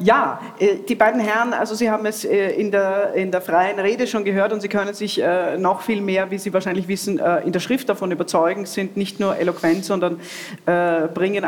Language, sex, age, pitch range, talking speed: German, female, 40-59, 175-205 Hz, 200 wpm